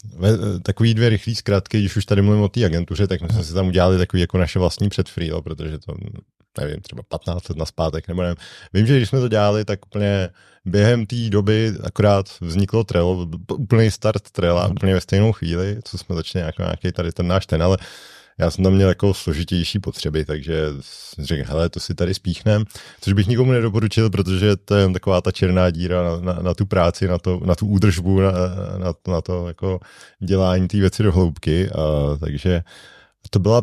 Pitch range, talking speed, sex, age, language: 85-105 Hz, 200 wpm, male, 30-49, Czech